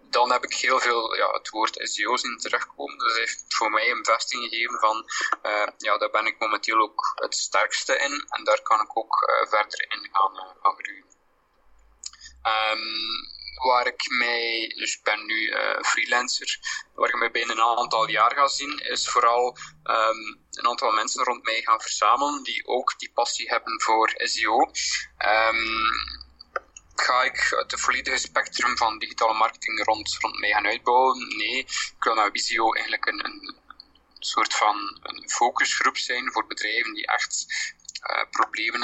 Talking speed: 160 wpm